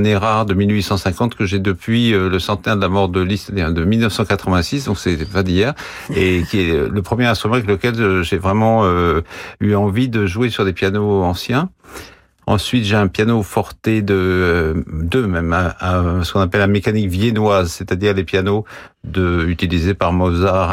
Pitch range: 90-110 Hz